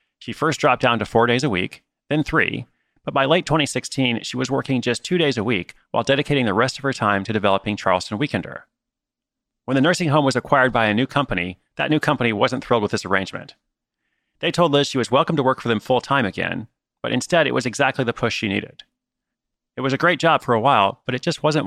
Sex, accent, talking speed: male, American, 235 wpm